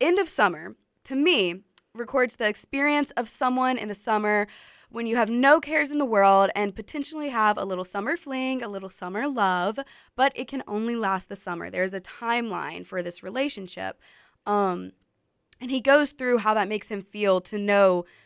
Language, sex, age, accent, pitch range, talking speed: English, female, 20-39, American, 185-245 Hz, 185 wpm